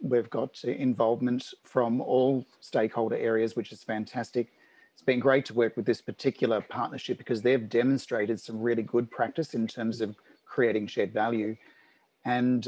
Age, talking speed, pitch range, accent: 40-59, 155 wpm, 115-135 Hz, Australian